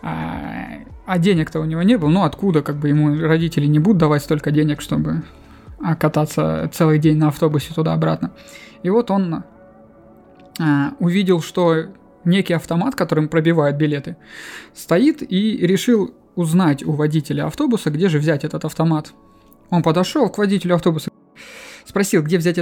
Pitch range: 155-190 Hz